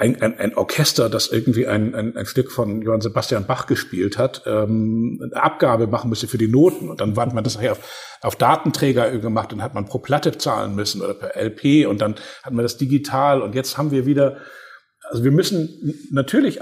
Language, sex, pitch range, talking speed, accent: German, male, 115-150 Hz, 215 wpm, German